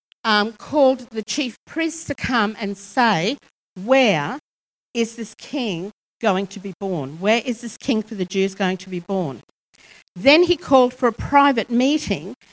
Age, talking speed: 50-69, 170 wpm